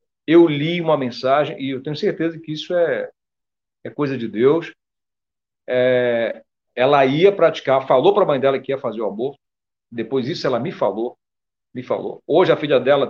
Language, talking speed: Portuguese, 185 wpm